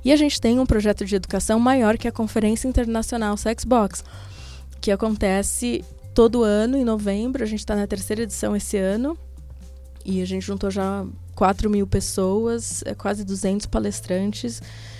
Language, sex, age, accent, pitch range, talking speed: Portuguese, female, 20-39, Brazilian, 190-225 Hz, 155 wpm